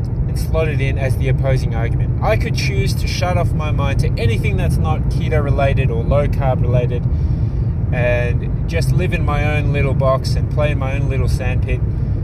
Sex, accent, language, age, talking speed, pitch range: male, Australian, English, 20-39, 190 wpm, 120-135 Hz